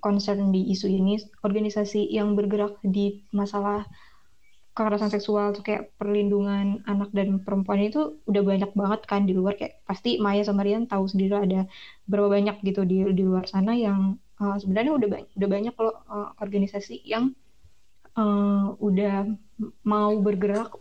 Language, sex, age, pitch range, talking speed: Indonesian, female, 20-39, 200-215 Hz, 155 wpm